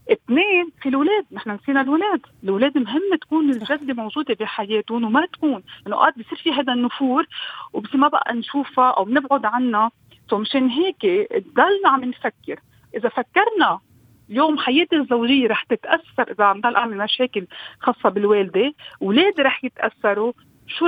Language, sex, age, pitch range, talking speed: Arabic, female, 40-59, 225-290 Hz, 140 wpm